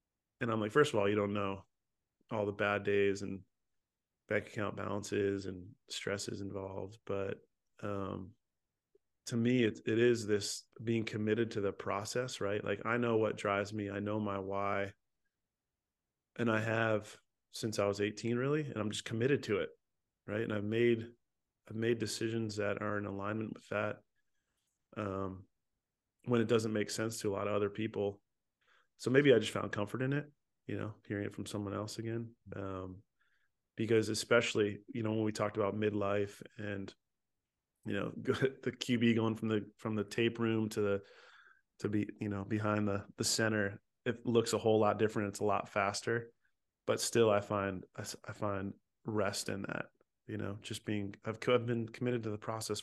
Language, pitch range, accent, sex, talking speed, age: English, 100-115 Hz, American, male, 185 wpm, 30-49